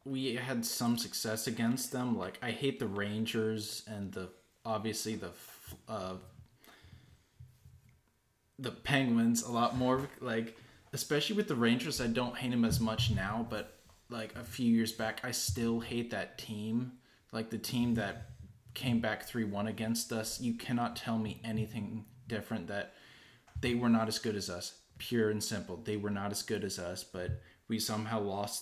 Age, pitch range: 20-39, 105-120 Hz